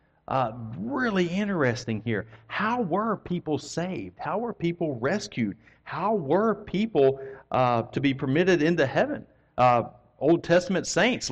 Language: English